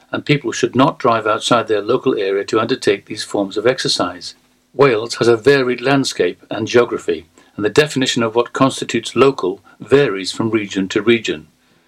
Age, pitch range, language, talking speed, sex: 60-79, 120-145 Hz, English, 170 wpm, male